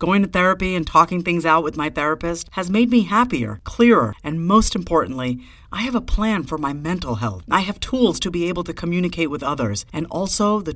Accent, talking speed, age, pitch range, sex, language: American, 220 wpm, 50-69, 155-205 Hz, female, English